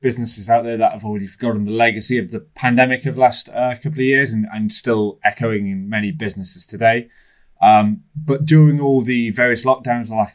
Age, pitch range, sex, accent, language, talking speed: 20-39, 100-125 Hz, male, British, English, 210 wpm